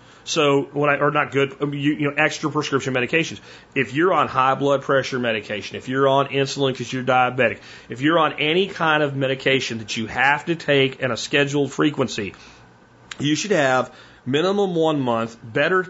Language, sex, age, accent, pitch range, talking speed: English, male, 40-59, American, 120-145 Hz, 180 wpm